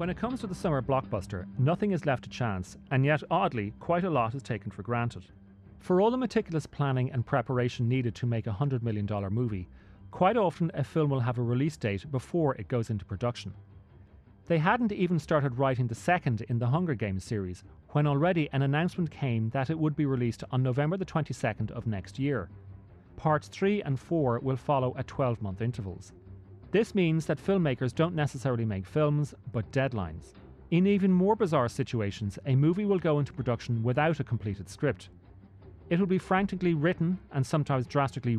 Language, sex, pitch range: English, male, 105-160 Hz